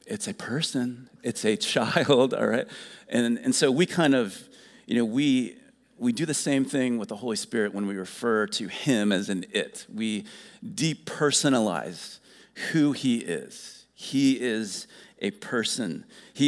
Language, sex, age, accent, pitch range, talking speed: English, male, 40-59, American, 120-175 Hz, 160 wpm